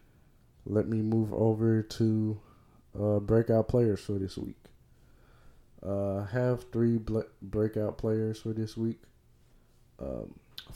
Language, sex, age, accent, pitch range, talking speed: English, male, 20-39, American, 100-110 Hz, 115 wpm